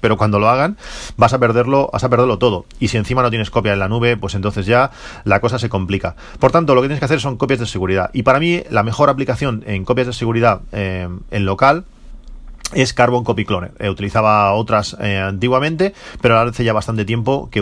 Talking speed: 230 wpm